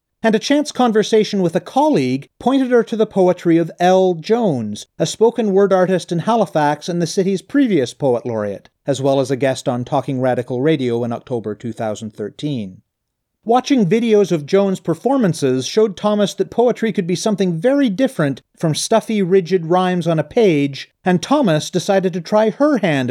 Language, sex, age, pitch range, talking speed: English, male, 40-59, 135-200 Hz, 175 wpm